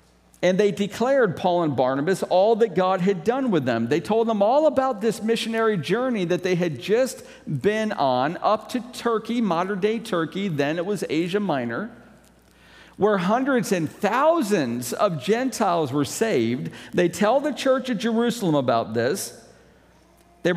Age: 50-69